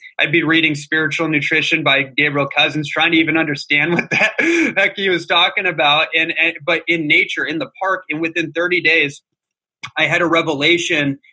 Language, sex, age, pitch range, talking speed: English, male, 20-39, 145-175 Hz, 185 wpm